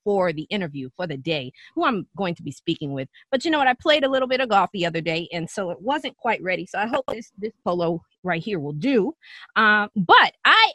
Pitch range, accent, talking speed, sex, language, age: 190-285 Hz, American, 255 wpm, female, English, 20-39